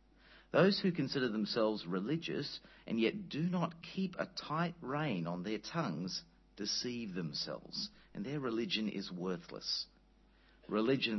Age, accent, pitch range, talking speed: 50-69, Australian, 95-135 Hz, 130 wpm